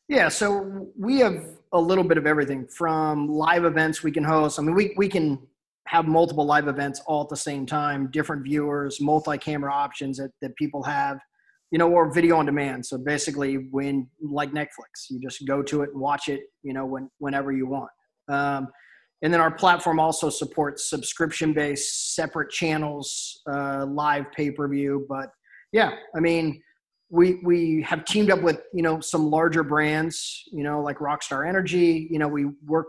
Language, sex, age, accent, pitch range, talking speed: English, male, 20-39, American, 140-165 Hz, 180 wpm